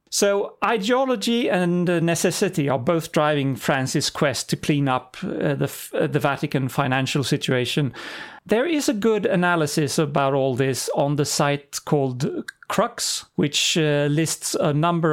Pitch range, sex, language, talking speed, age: 135-170 Hz, male, English, 145 wpm, 40-59